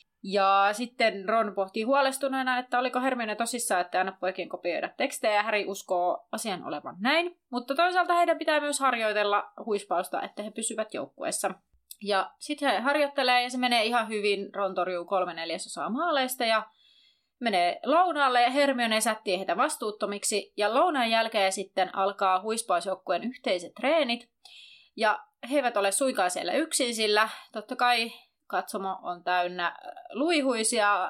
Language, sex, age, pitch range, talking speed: Finnish, female, 30-49, 190-260 Hz, 140 wpm